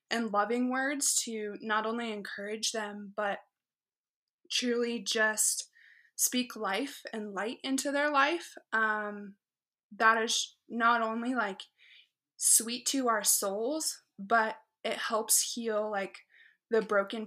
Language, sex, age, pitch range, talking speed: English, female, 20-39, 210-255 Hz, 120 wpm